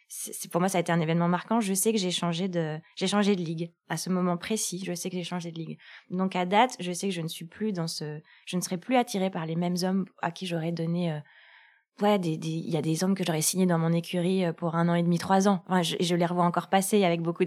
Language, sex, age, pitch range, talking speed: French, female, 20-39, 170-195 Hz, 290 wpm